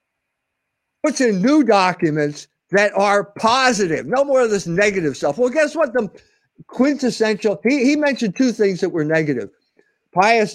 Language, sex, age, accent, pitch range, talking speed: English, male, 50-69, American, 175-245 Hz, 155 wpm